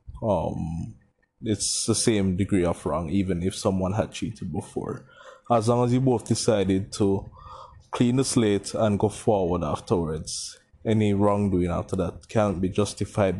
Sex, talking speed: male, 150 wpm